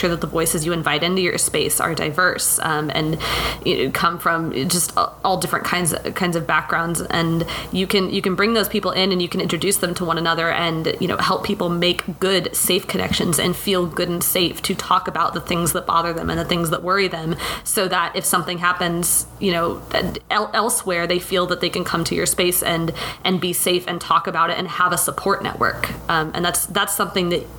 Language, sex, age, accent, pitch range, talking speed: English, female, 20-39, American, 165-185 Hz, 220 wpm